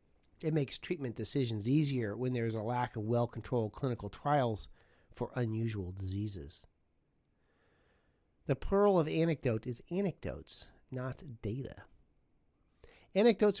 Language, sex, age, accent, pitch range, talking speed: English, male, 40-59, American, 105-145 Hz, 115 wpm